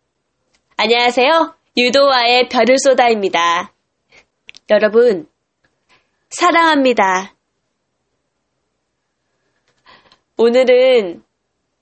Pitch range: 195-265 Hz